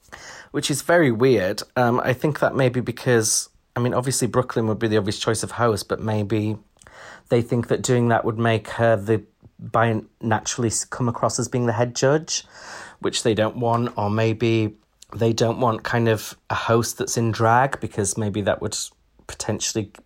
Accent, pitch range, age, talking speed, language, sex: British, 105-125 Hz, 30-49, 185 wpm, English, male